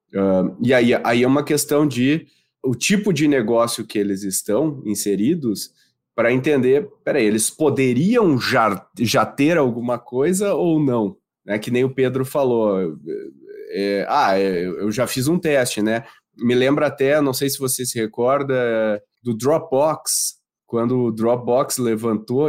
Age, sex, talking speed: 20-39, male, 150 wpm